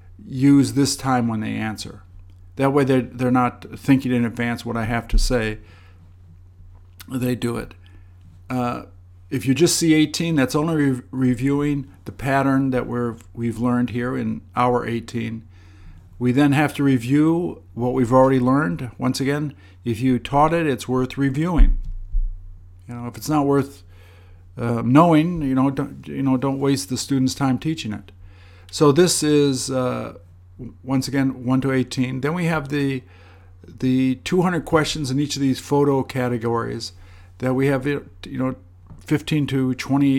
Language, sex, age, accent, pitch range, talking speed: English, male, 50-69, American, 95-135 Hz, 165 wpm